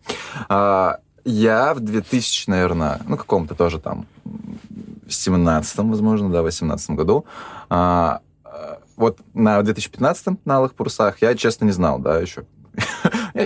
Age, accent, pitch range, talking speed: 20-39, native, 85-110 Hz, 130 wpm